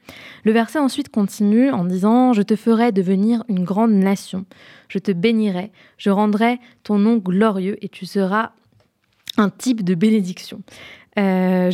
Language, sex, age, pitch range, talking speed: French, female, 20-39, 190-230 Hz, 155 wpm